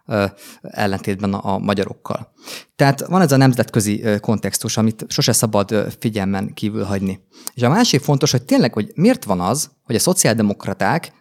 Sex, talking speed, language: male, 150 wpm, Hungarian